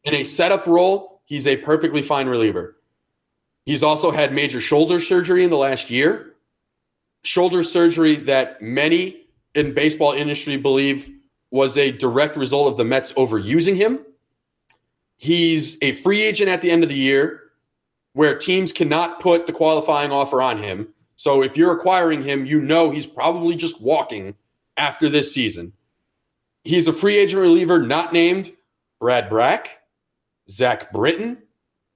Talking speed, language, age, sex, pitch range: 150 wpm, English, 30-49, male, 145-200 Hz